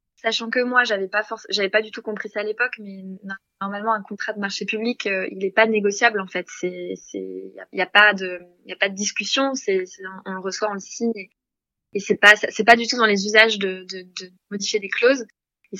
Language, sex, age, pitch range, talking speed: French, female, 20-39, 200-245 Hz, 255 wpm